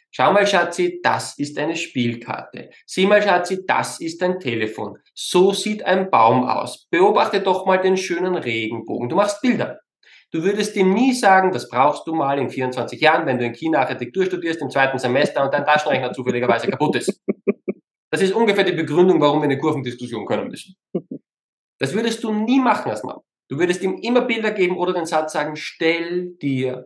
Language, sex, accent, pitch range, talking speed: German, male, German, 145-215 Hz, 190 wpm